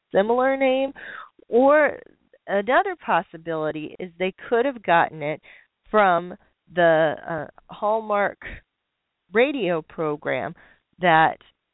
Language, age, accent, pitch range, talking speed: English, 40-59, American, 165-225 Hz, 90 wpm